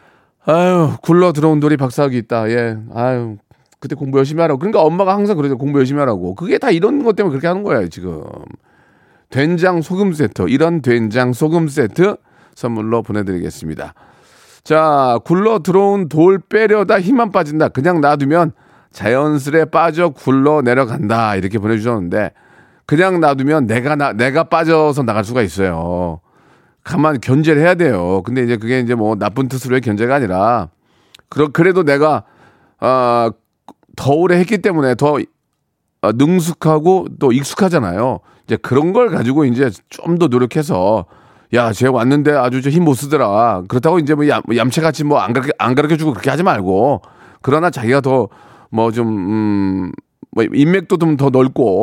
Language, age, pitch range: Korean, 40-59, 120-165 Hz